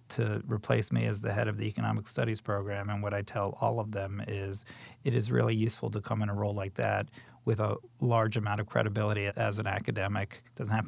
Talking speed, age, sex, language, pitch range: 230 wpm, 40-59, male, English, 105-120 Hz